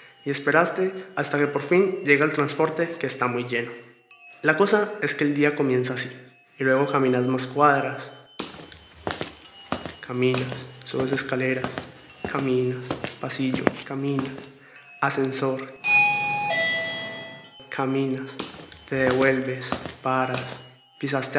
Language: Spanish